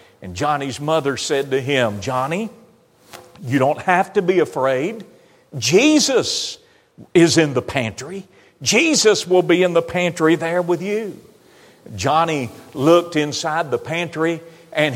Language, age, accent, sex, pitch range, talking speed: English, 50-69, American, male, 170-230 Hz, 130 wpm